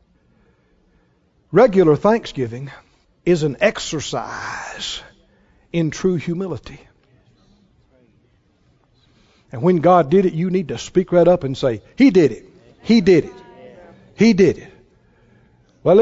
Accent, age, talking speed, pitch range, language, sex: American, 60-79, 125 wpm, 170-280 Hz, English, male